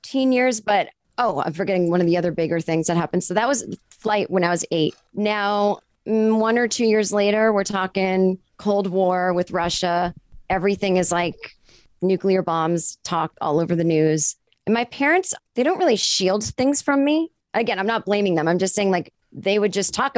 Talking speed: 195 wpm